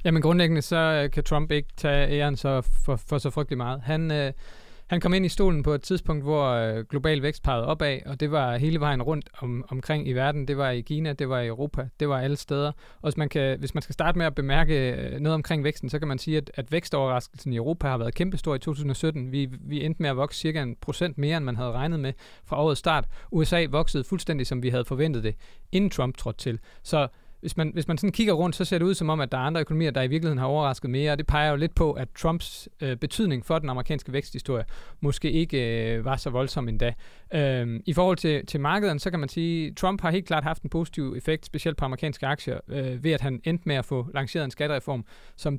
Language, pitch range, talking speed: Danish, 130-160 Hz, 250 wpm